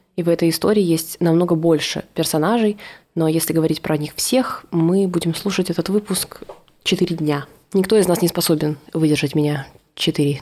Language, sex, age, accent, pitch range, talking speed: Russian, female, 20-39, native, 160-190 Hz, 165 wpm